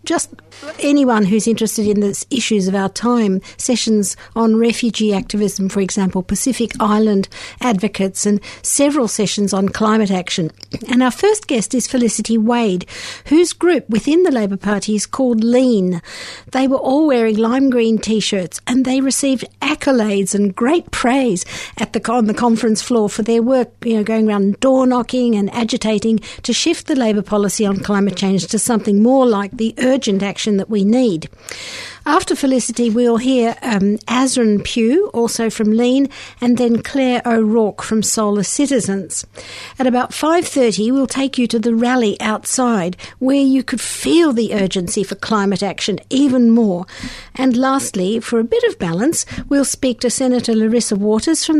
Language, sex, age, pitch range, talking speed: English, female, 60-79, 205-255 Hz, 165 wpm